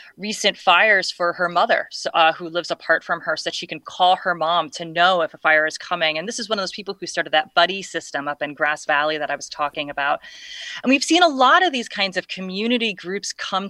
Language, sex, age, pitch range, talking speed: English, female, 30-49, 165-220 Hz, 255 wpm